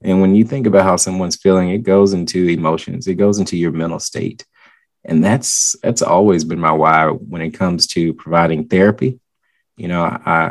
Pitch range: 85-105 Hz